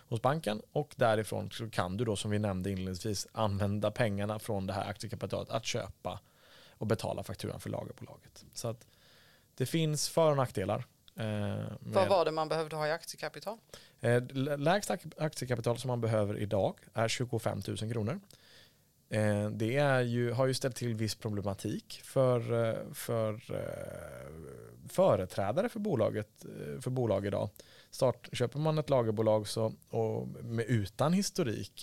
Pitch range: 105-130 Hz